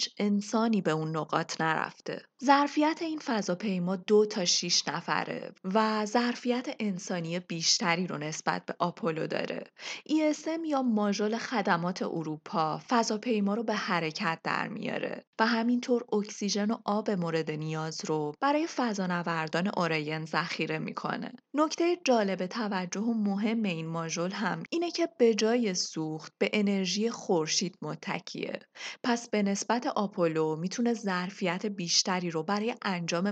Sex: female